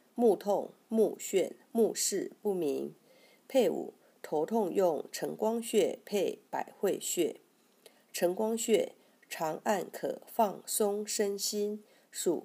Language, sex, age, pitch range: Chinese, female, 50-69, 180-245 Hz